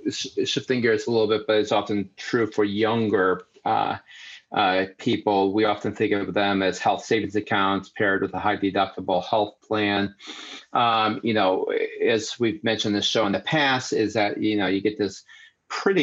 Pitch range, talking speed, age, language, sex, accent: 95-115 Hz, 185 wpm, 30-49, English, male, American